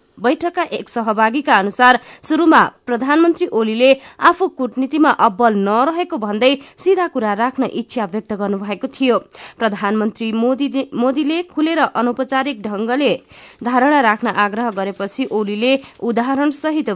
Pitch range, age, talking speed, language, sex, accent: 210-270 Hz, 20-39, 110 wpm, German, female, Indian